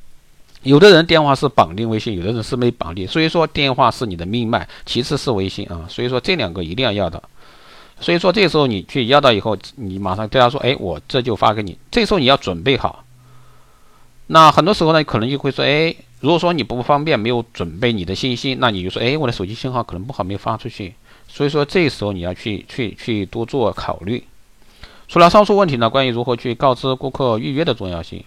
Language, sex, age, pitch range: Chinese, male, 50-69, 100-140 Hz